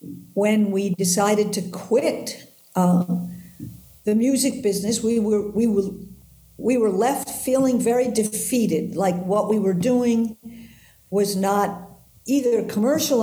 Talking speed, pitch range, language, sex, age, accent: 125 wpm, 190-250 Hz, English, female, 50-69, American